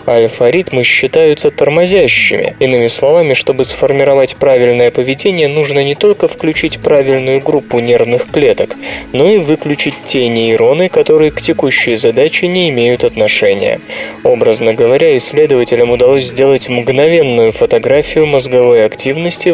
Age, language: 20-39, Russian